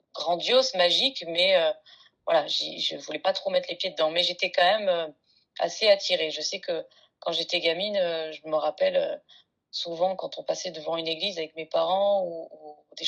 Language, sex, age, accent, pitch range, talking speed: French, female, 20-39, French, 160-205 Hz, 200 wpm